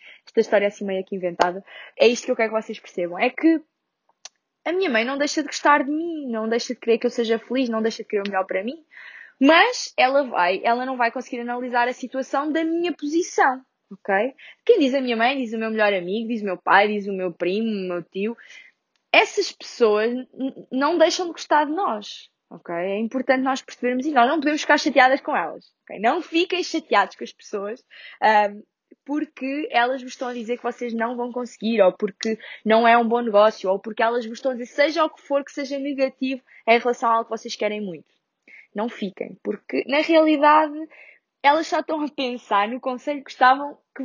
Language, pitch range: Portuguese, 220-300 Hz